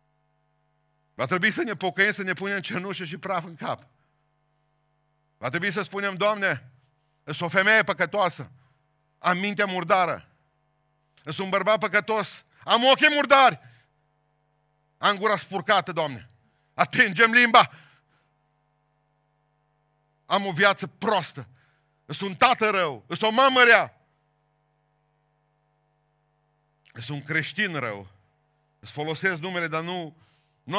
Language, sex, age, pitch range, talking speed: Romanian, male, 50-69, 130-155 Hz, 115 wpm